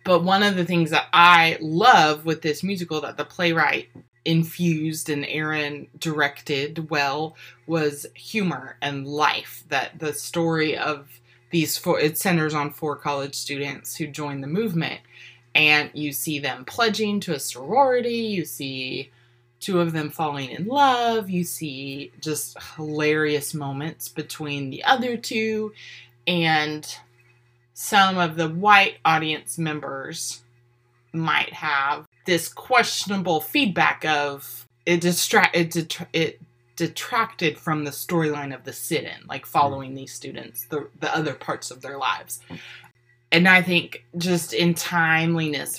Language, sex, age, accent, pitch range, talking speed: English, female, 20-39, American, 140-170 Hz, 140 wpm